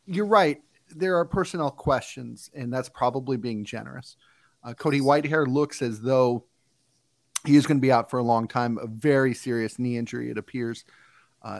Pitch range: 120-145 Hz